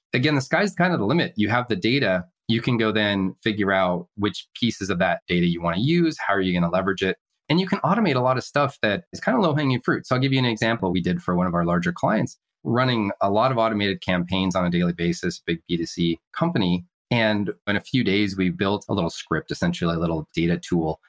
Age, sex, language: 20-39, male, English